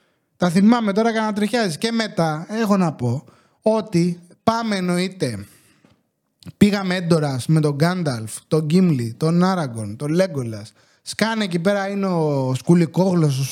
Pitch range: 160-220 Hz